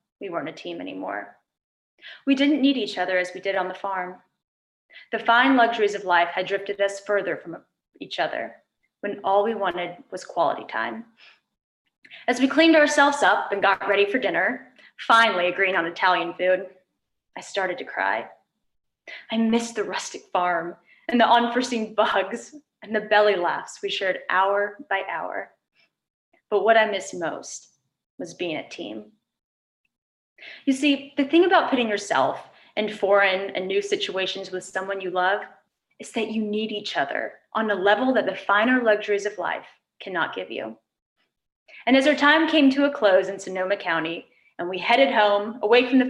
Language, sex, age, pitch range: English, female, 10-29, 190-245 Hz